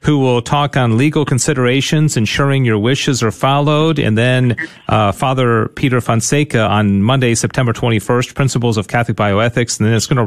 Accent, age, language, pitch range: American, 40-59, English, 110-155 Hz